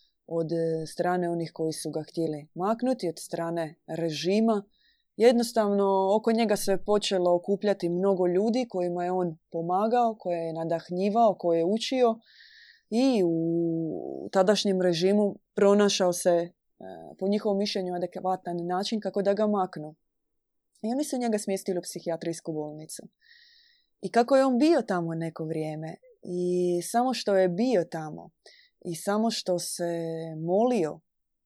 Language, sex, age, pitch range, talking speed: Croatian, female, 20-39, 170-210 Hz, 135 wpm